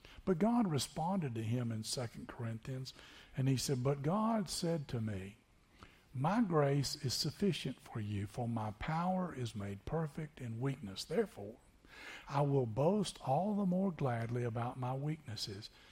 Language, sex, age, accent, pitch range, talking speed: English, male, 60-79, American, 115-155 Hz, 155 wpm